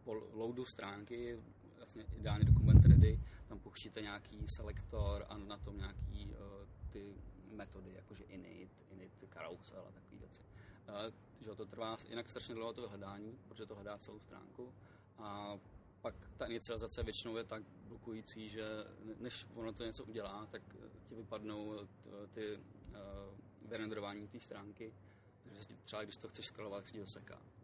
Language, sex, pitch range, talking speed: Czech, male, 100-115 Hz, 150 wpm